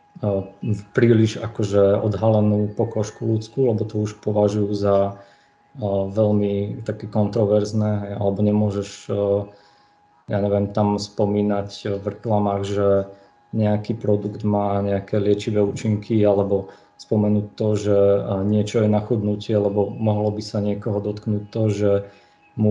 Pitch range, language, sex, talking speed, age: 100-110 Hz, Slovak, male, 120 wpm, 20-39